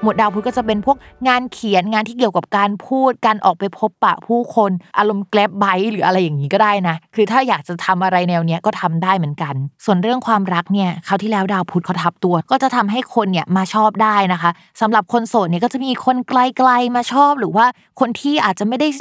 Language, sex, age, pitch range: Thai, female, 20-39, 180-230 Hz